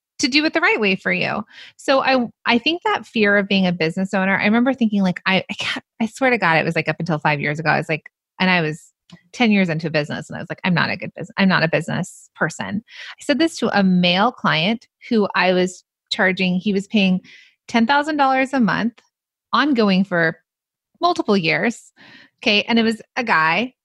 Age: 30-49